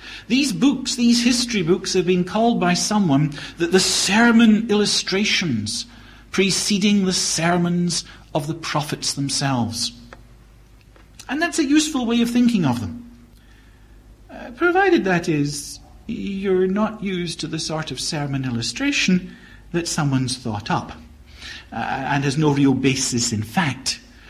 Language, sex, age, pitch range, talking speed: English, male, 50-69, 120-200 Hz, 135 wpm